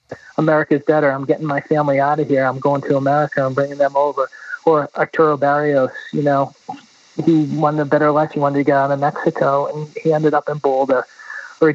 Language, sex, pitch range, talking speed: English, male, 140-165 Hz, 210 wpm